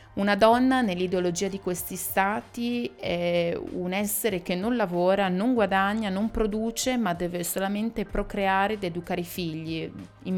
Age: 20-39